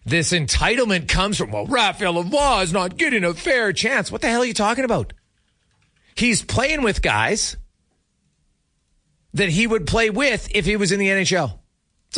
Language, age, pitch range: English, 40-59, 140-210 Hz